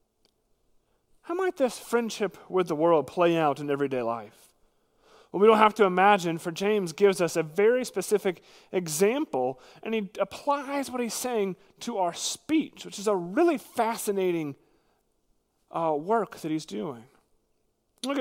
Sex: male